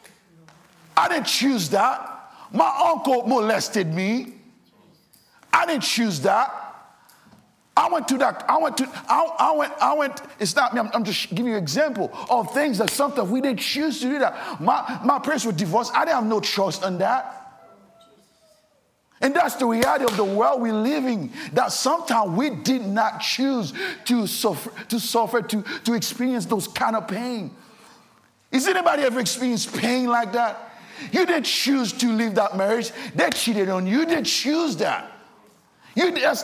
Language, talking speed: English, 175 wpm